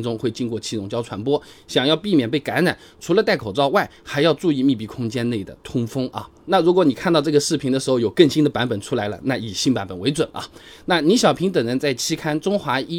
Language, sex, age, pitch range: Chinese, male, 20-39, 120-165 Hz